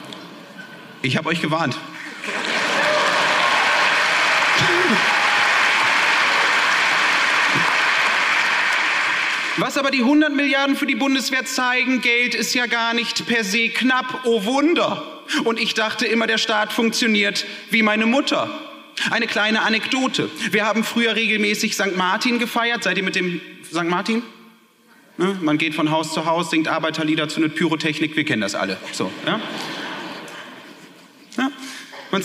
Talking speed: 125 wpm